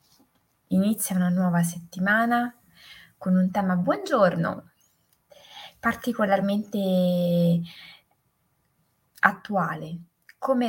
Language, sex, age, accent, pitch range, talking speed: Italian, female, 20-39, native, 175-210 Hz, 60 wpm